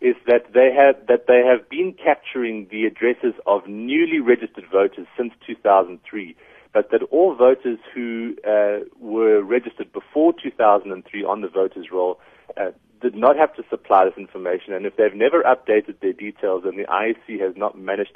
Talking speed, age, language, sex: 175 wpm, 30-49, English, male